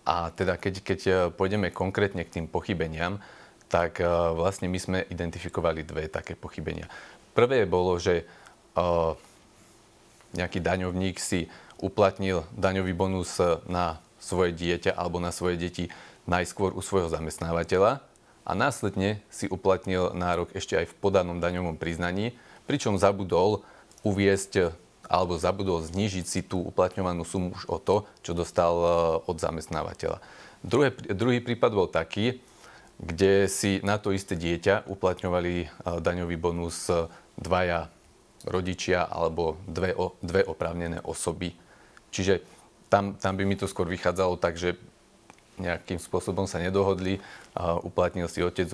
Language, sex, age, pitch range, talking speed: Slovak, male, 30-49, 85-95 Hz, 125 wpm